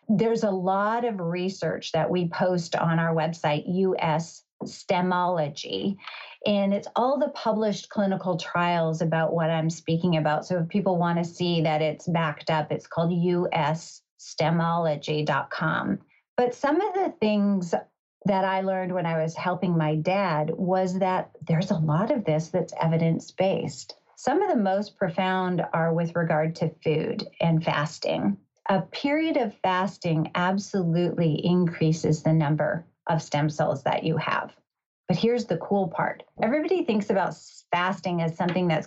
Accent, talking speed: American, 155 wpm